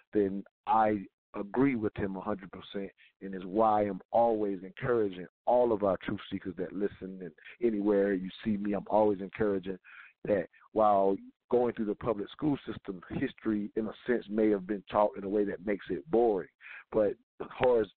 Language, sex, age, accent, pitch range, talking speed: English, male, 50-69, American, 100-115 Hz, 175 wpm